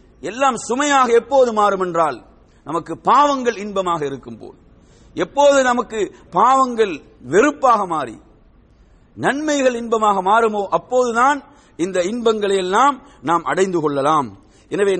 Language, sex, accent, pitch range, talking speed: English, male, Indian, 190-260 Hz, 95 wpm